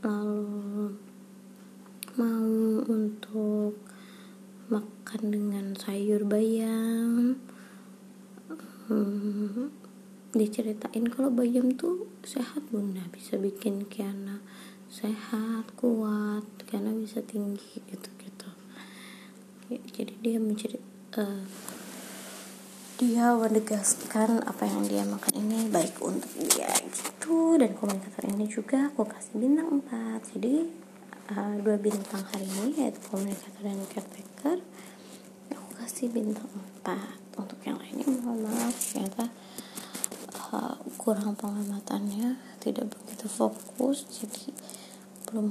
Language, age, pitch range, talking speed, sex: Indonesian, 20-39, 200-235 Hz, 95 wpm, female